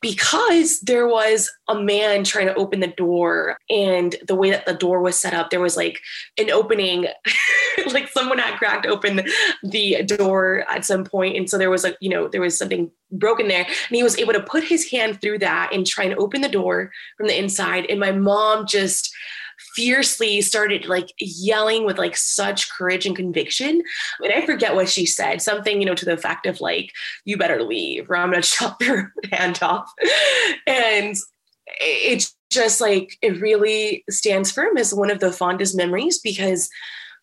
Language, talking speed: English, 190 wpm